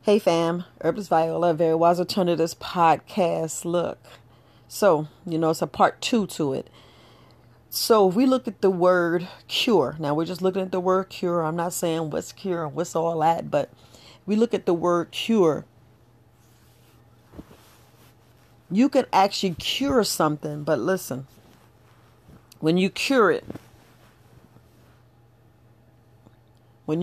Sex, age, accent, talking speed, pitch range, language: female, 40-59, American, 140 wpm, 125-180 Hz, English